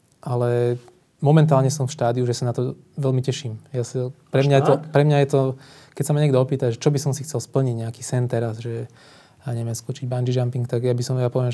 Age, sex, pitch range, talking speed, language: 20-39, male, 120-135 Hz, 250 wpm, Slovak